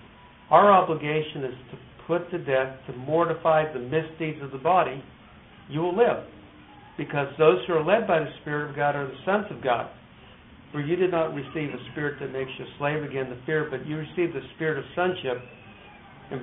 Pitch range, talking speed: 125-160 Hz, 200 wpm